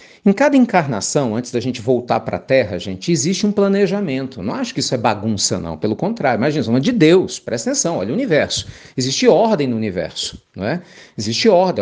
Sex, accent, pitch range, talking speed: male, Brazilian, 125-185 Hz, 205 wpm